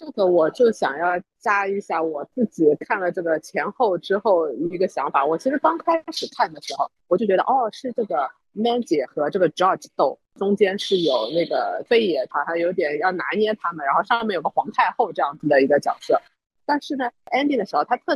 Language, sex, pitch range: Chinese, female, 180-285 Hz